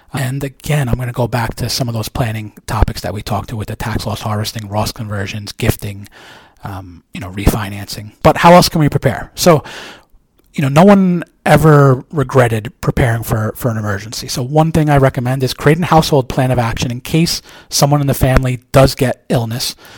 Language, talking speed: English, 205 wpm